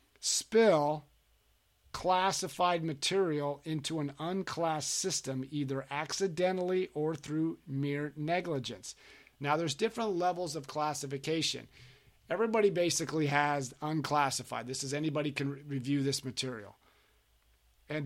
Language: English